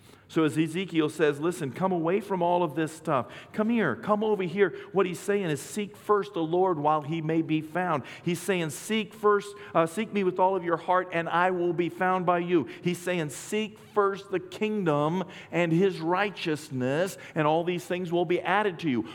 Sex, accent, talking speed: male, American, 210 wpm